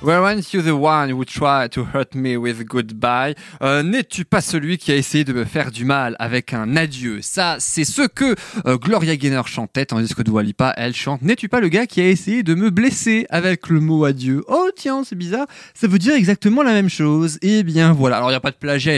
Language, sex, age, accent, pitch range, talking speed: French, male, 20-39, French, 125-170 Hz, 235 wpm